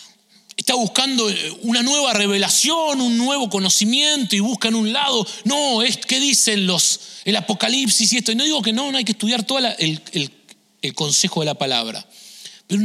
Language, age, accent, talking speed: English, 30-49, Argentinian, 185 wpm